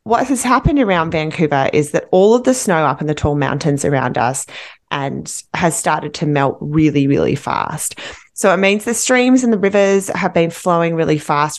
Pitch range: 165-220 Hz